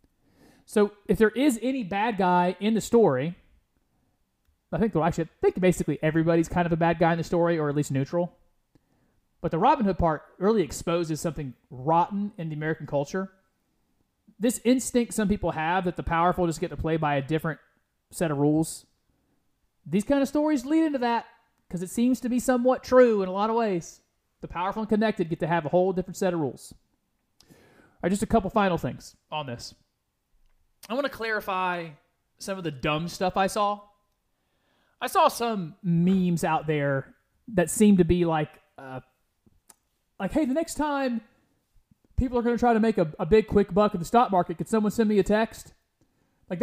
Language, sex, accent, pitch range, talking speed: English, male, American, 165-225 Hz, 195 wpm